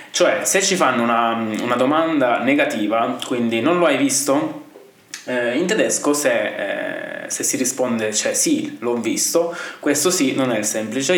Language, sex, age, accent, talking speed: Italian, male, 20-39, native, 160 wpm